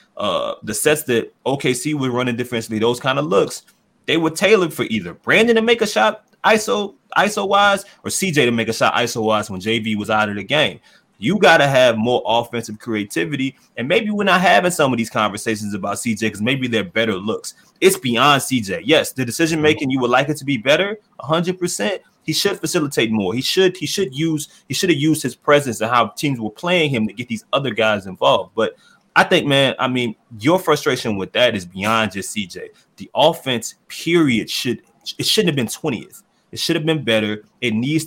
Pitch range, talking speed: 115-160 Hz, 215 wpm